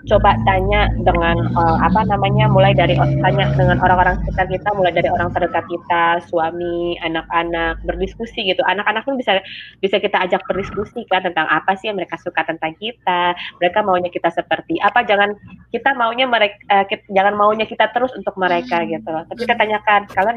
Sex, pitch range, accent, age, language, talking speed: female, 170-205 Hz, native, 20-39, Indonesian, 180 wpm